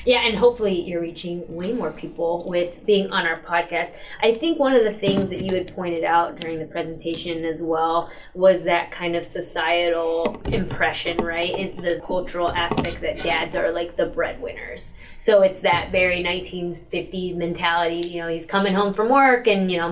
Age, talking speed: 20-39, 185 wpm